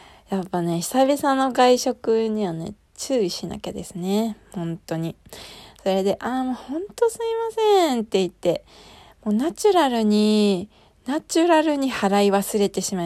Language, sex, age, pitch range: Japanese, female, 20-39, 175-255 Hz